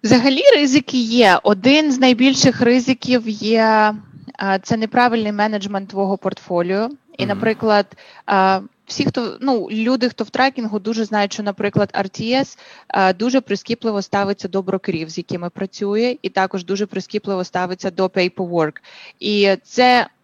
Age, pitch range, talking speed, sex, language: 20-39, 185-230 Hz, 130 wpm, female, English